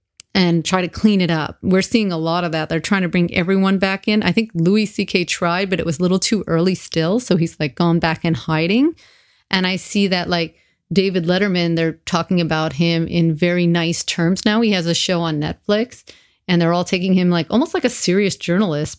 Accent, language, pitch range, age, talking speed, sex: American, English, 170-210 Hz, 30-49, 230 wpm, female